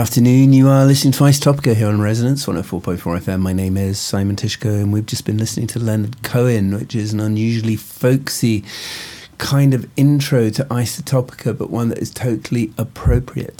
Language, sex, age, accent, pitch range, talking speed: English, male, 40-59, British, 100-125 Hz, 180 wpm